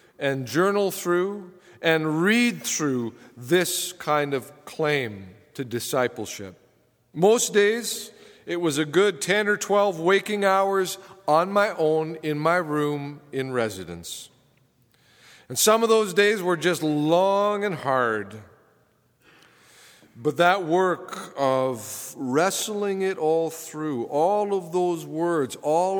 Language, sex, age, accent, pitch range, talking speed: English, male, 50-69, American, 125-180 Hz, 125 wpm